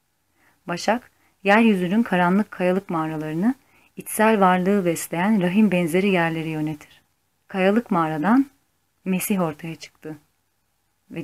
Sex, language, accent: female, Turkish, native